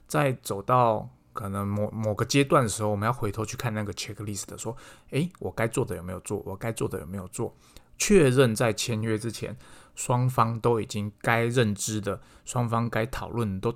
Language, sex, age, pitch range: Chinese, male, 20-39, 105-135 Hz